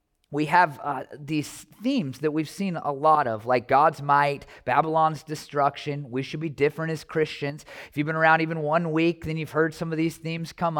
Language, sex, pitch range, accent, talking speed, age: English, male, 120-170 Hz, American, 205 wpm, 30-49